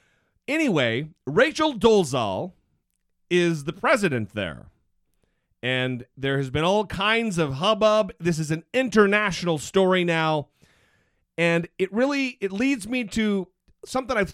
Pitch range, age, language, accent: 150-220 Hz, 40-59, English, American